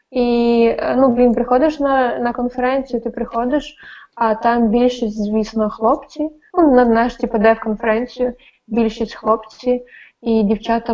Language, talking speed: Ukrainian, 130 wpm